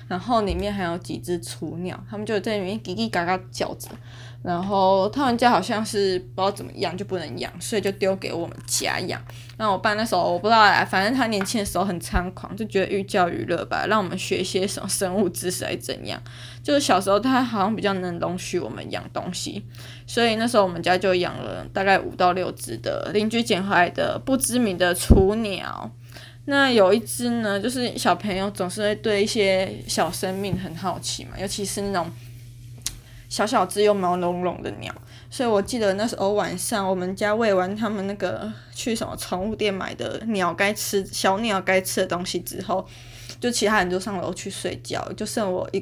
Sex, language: female, Chinese